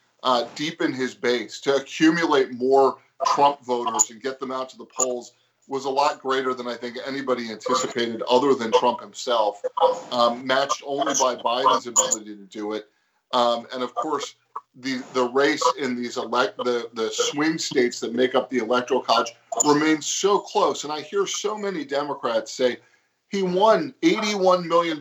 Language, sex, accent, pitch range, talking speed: English, male, American, 130-175 Hz, 175 wpm